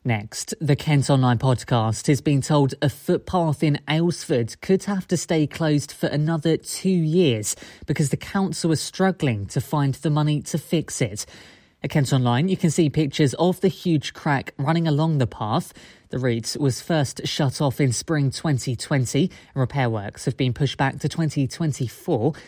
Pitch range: 130-160 Hz